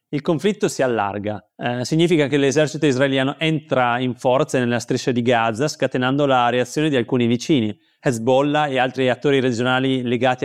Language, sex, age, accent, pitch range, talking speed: Italian, male, 30-49, native, 120-145 Hz, 160 wpm